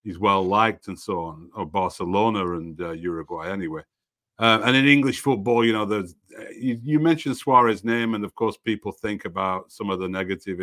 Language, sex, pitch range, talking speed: English, male, 110-135 Hz, 205 wpm